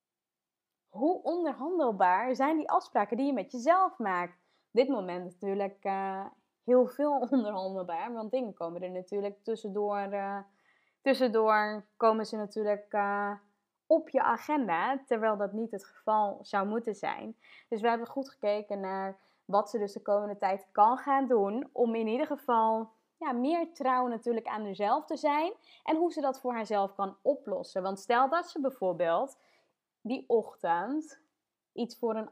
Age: 20-39